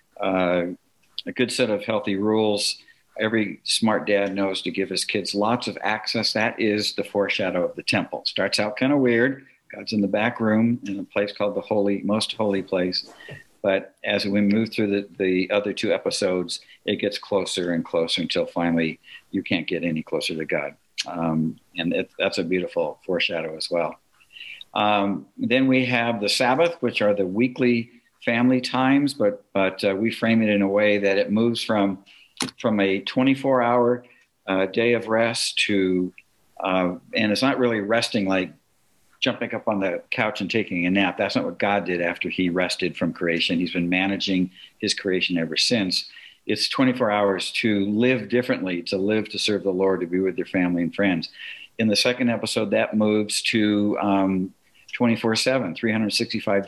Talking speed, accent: 180 wpm, American